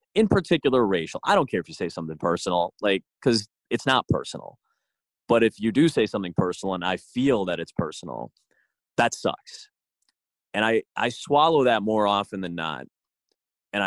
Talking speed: 175 wpm